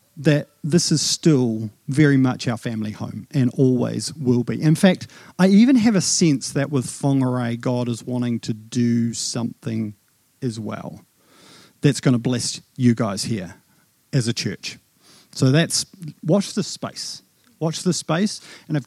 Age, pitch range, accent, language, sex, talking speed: 40-59, 125-165 Hz, Australian, English, male, 160 wpm